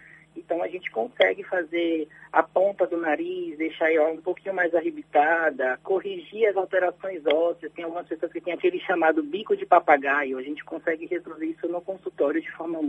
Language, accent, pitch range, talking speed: Portuguese, Brazilian, 165-235 Hz, 175 wpm